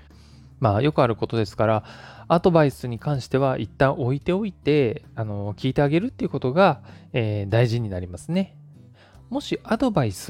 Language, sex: Japanese, male